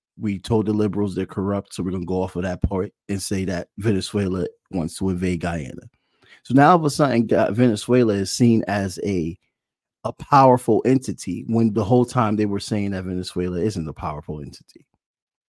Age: 30-49